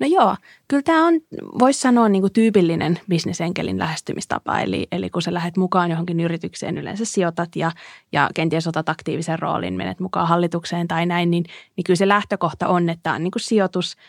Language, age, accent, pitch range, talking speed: Finnish, 20-39, native, 170-200 Hz, 185 wpm